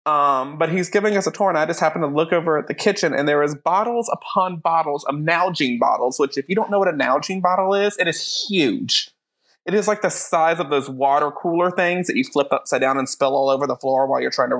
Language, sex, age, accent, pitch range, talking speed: English, male, 30-49, American, 150-205 Hz, 265 wpm